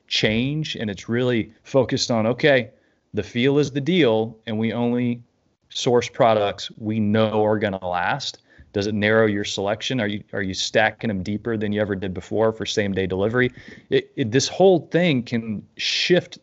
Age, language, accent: 30-49, English, American